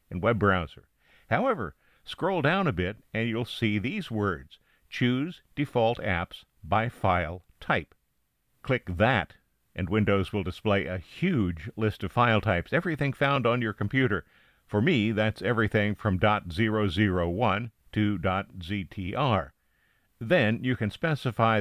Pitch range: 95-115 Hz